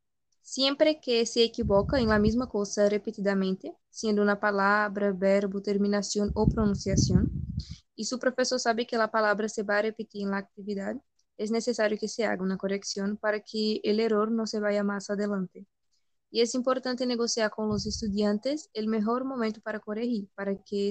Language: Portuguese